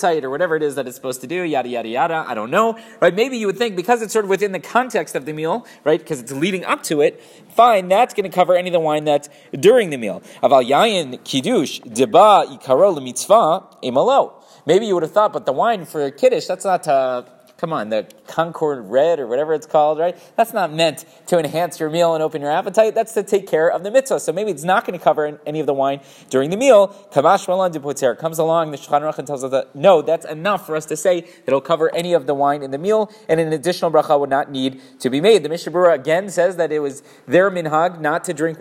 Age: 30-49